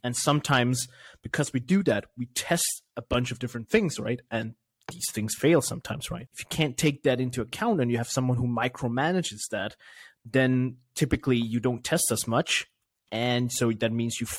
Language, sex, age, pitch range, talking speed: English, male, 20-39, 120-150 Hz, 190 wpm